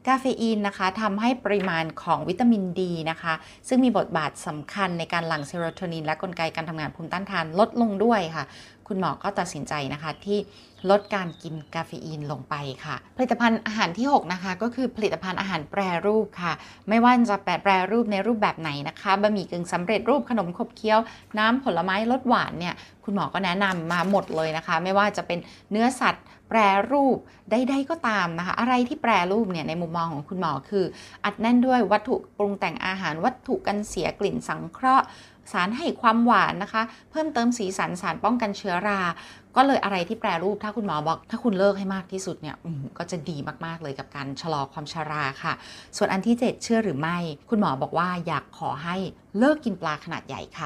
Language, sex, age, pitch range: Thai, female, 20-39, 175-225 Hz